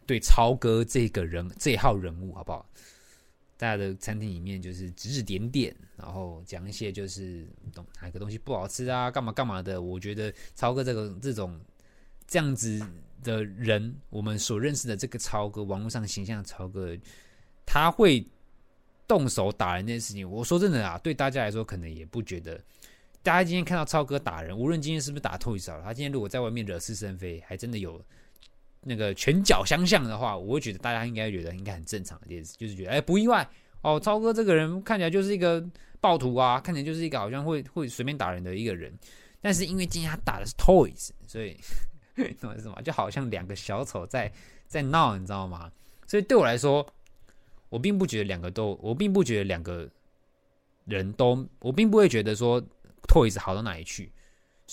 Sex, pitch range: male, 95-140 Hz